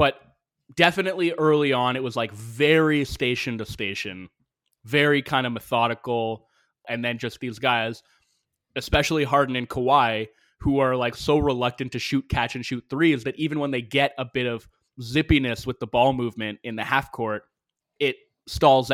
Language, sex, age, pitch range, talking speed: English, male, 20-39, 115-145 Hz, 170 wpm